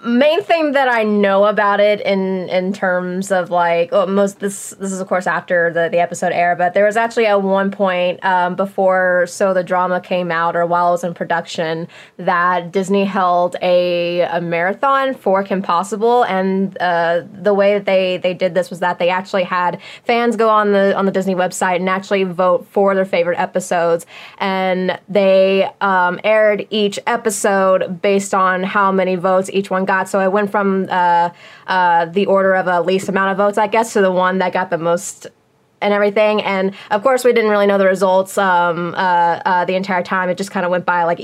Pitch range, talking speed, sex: 175-200 Hz, 210 wpm, female